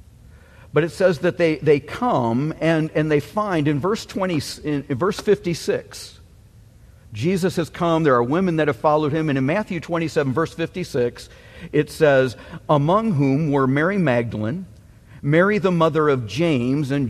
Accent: American